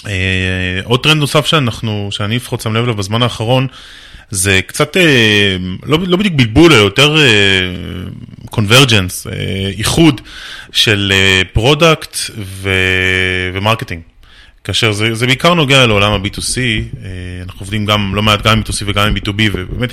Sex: male